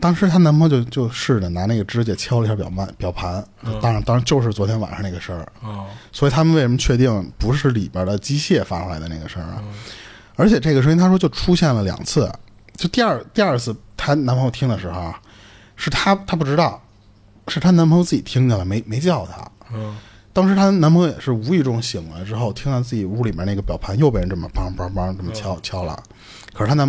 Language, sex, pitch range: Chinese, male, 100-140 Hz